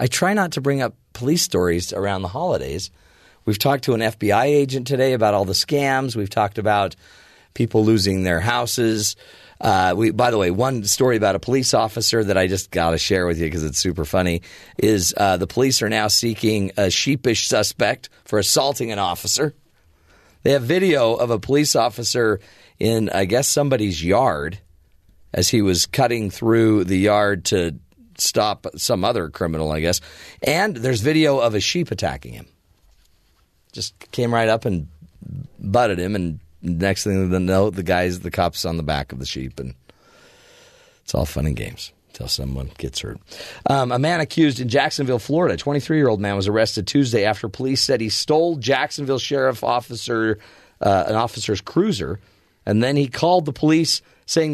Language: English